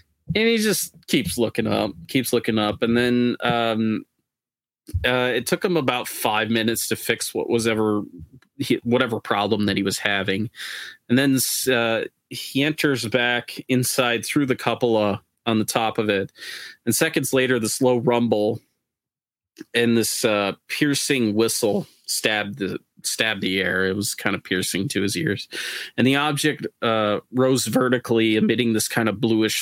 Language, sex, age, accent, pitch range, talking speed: English, male, 30-49, American, 110-125 Hz, 165 wpm